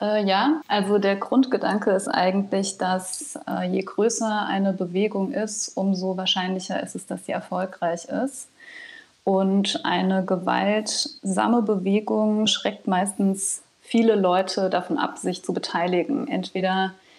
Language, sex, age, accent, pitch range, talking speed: German, female, 20-39, German, 180-205 Hz, 125 wpm